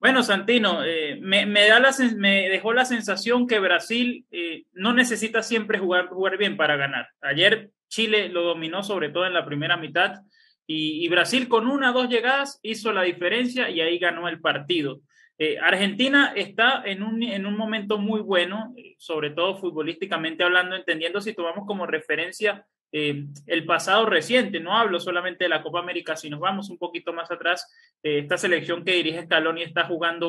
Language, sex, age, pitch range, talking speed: Spanish, male, 20-39, 170-220 Hz, 185 wpm